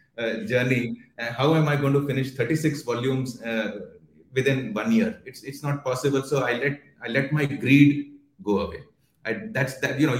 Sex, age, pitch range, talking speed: male, 30-49, 125-160 Hz, 195 wpm